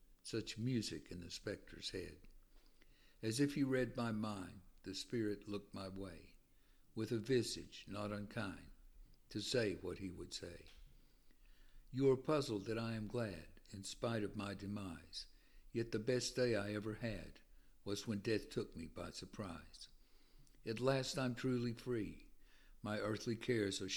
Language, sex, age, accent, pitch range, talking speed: English, male, 60-79, American, 95-120 Hz, 160 wpm